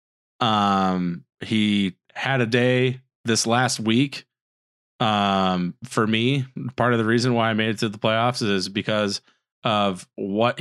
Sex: male